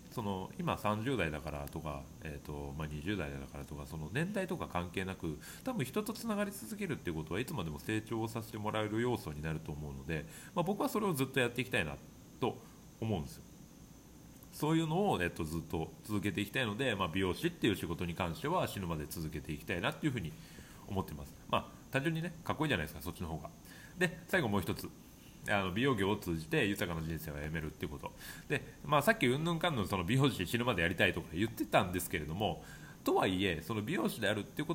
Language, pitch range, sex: Japanese, 80-125 Hz, male